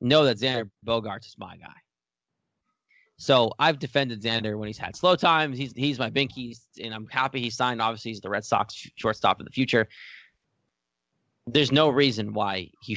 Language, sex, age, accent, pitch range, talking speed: English, male, 20-39, American, 105-130 Hz, 180 wpm